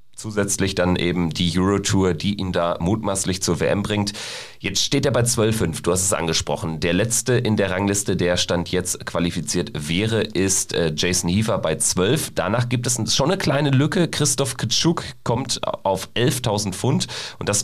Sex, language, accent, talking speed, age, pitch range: male, German, German, 175 wpm, 30-49, 85-110 Hz